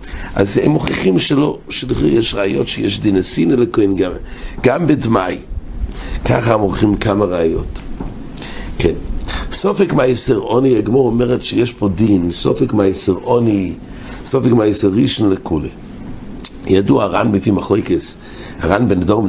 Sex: male